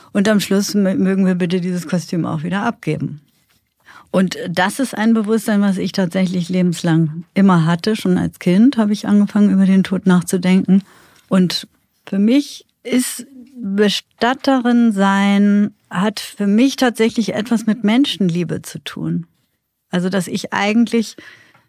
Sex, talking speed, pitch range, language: female, 140 wpm, 180-215 Hz, German